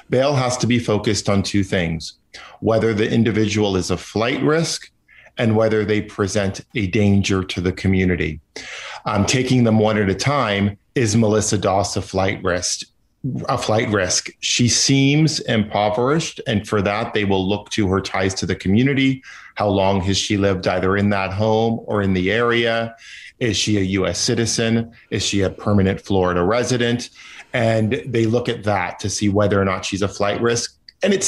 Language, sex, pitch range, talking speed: English, male, 100-120 Hz, 180 wpm